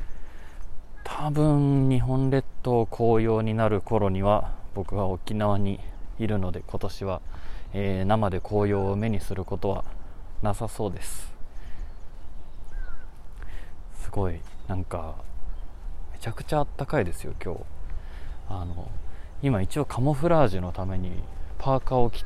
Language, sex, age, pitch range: Japanese, male, 20-39, 85-105 Hz